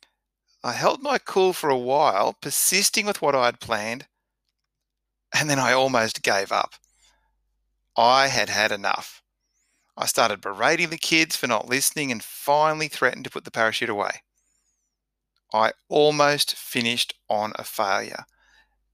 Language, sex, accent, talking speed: English, male, Australian, 145 wpm